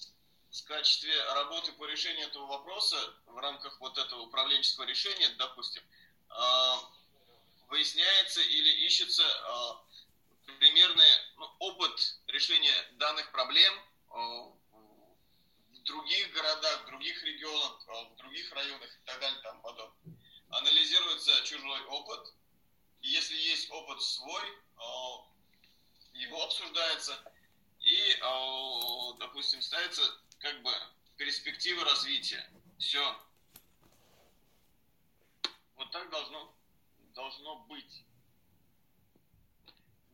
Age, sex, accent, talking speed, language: 30-49, male, native, 85 wpm, Russian